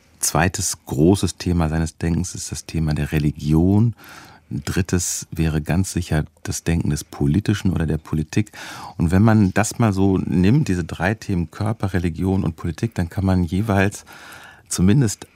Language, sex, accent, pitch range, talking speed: German, male, German, 80-95 Hz, 155 wpm